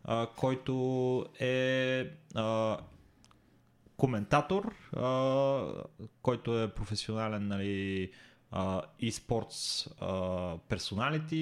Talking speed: 75 wpm